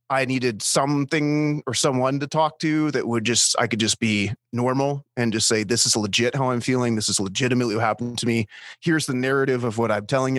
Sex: male